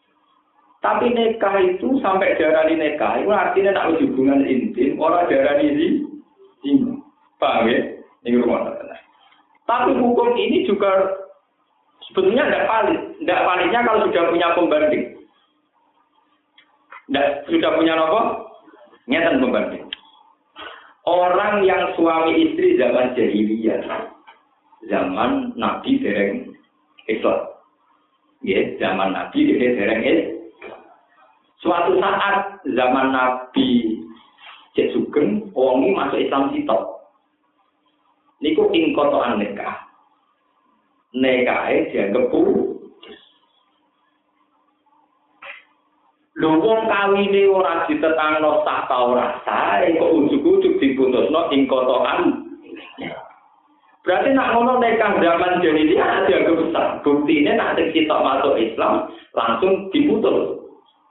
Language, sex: Indonesian, male